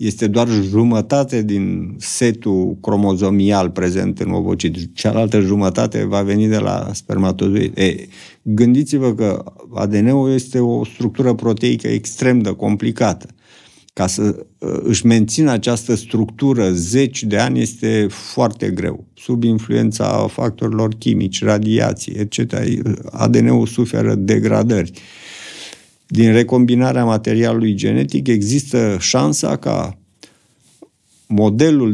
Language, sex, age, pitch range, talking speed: Romanian, male, 50-69, 100-120 Hz, 105 wpm